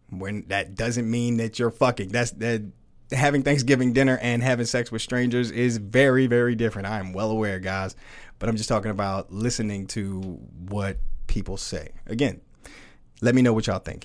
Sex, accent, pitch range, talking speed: male, American, 100-130 Hz, 185 wpm